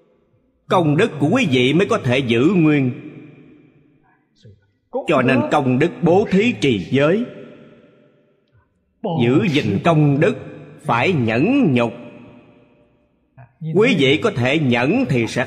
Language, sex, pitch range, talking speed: Vietnamese, male, 110-150 Hz, 125 wpm